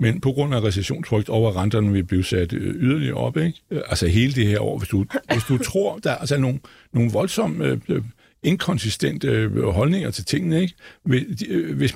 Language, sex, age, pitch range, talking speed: Danish, male, 60-79, 110-155 Hz, 185 wpm